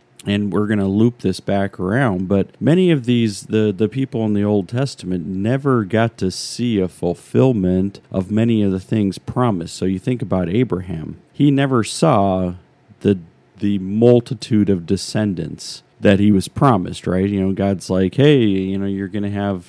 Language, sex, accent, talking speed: English, male, American, 185 wpm